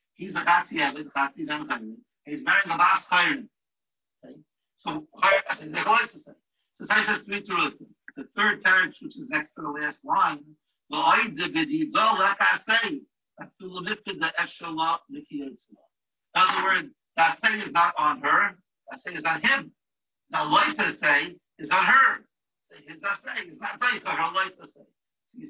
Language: English